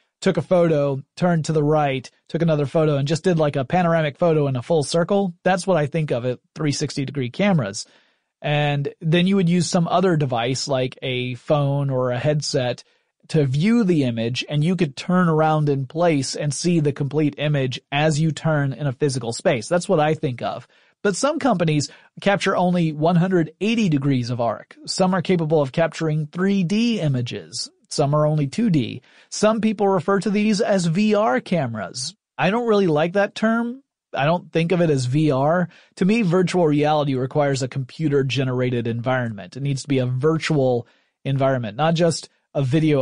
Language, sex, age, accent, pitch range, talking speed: English, male, 30-49, American, 140-180 Hz, 185 wpm